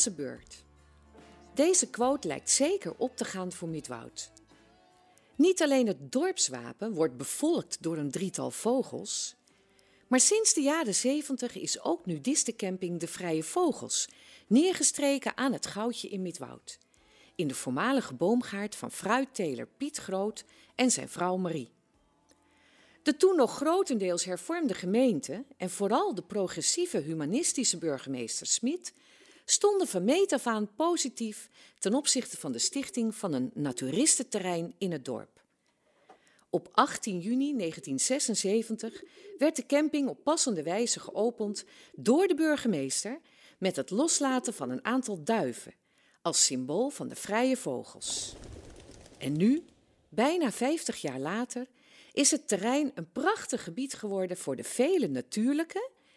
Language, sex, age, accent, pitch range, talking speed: Dutch, female, 40-59, Dutch, 180-285 Hz, 130 wpm